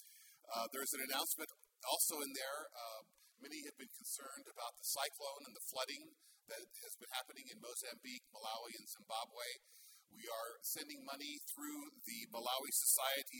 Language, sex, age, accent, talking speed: English, male, 50-69, American, 155 wpm